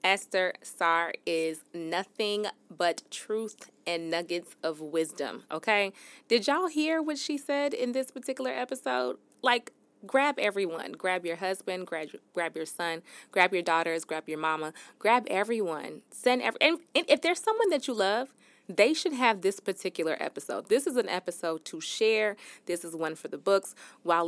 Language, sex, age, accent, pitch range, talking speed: English, female, 20-39, American, 170-240 Hz, 170 wpm